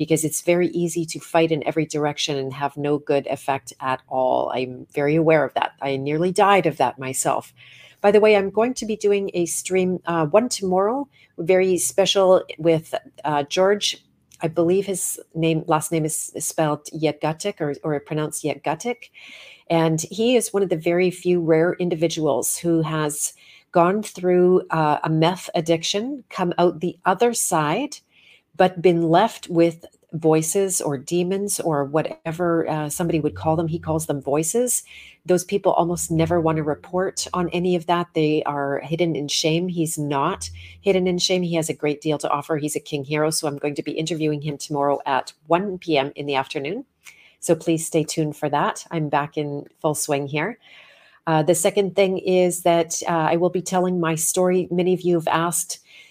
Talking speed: 190 wpm